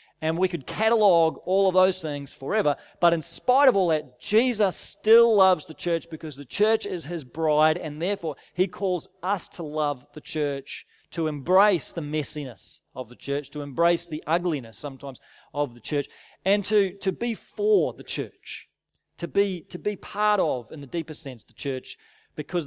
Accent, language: Australian, English